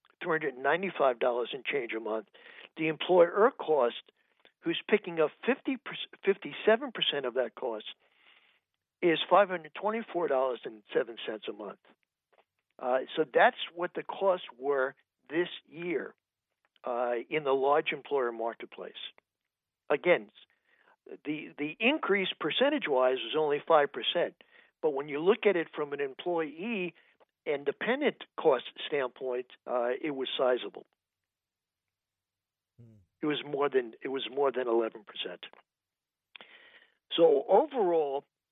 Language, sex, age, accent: English, male, 60-79, American